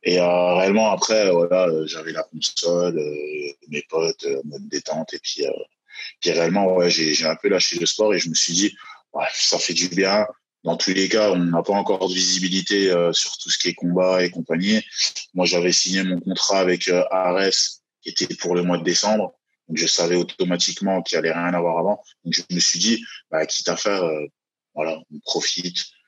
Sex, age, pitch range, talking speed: male, 20-39, 85-105 Hz, 220 wpm